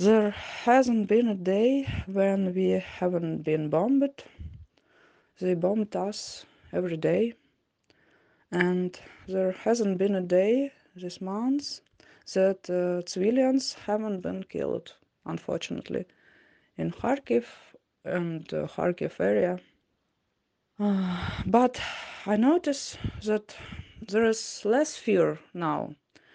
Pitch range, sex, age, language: 190-255 Hz, female, 20-39, English